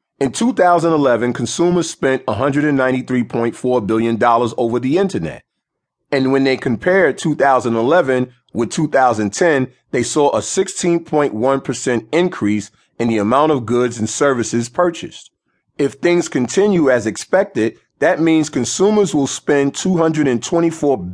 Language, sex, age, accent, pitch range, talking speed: English, male, 40-59, American, 115-155 Hz, 115 wpm